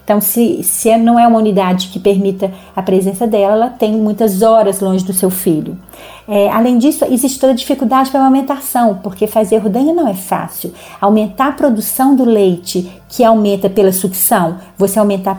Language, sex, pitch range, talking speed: Portuguese, female, 195-245 Hz, 185 wpm